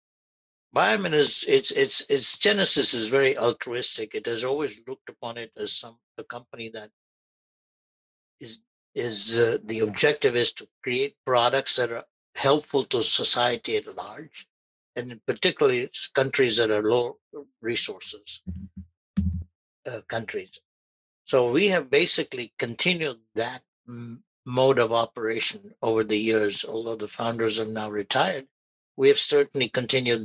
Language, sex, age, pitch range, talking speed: English, male, 60-79, 110-150 Hz, 135 wpm